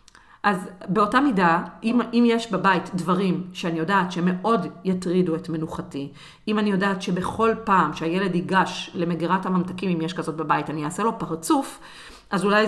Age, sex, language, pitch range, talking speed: 40-59, female, Hebrew, 170-210 Hz, 155 wpm